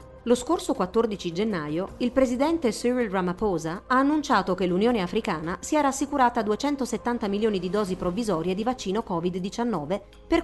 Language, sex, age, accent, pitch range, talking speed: Italian, female, 40-59, native, 175-240 Hz, 145 wpm